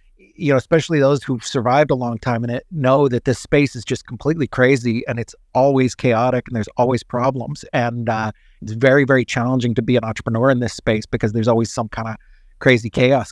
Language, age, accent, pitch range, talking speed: English, 40-59, American, 120-140 Hz, 215 wpm